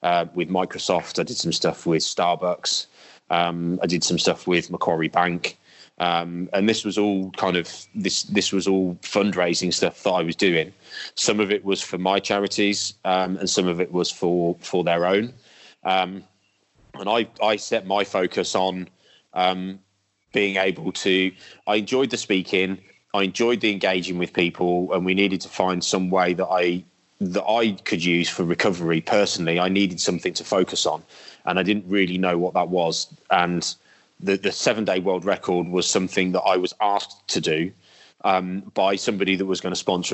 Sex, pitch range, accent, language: male, 90-95 Hz, British, English